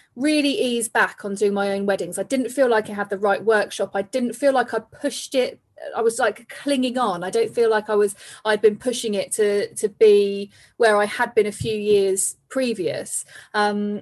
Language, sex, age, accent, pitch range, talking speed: English, female, 30-49, British, 200-240 Hz, 220 wpm